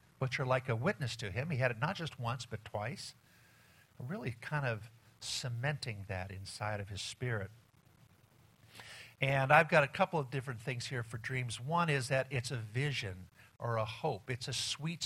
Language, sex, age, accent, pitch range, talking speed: English, male, 50-69, American, 110-140 Hz, 185 wpm